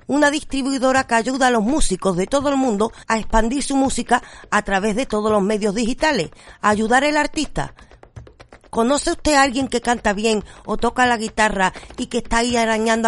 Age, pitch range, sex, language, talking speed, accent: 40-59, 225-280 Hz, female, Spanish, 195 wpm, American